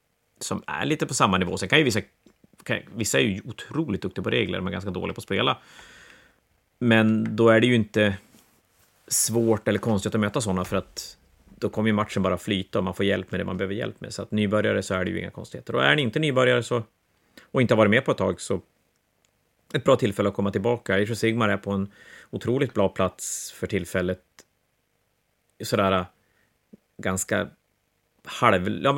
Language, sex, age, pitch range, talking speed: Swedish, male, 30-49, 95-115 Hz, 205 wpm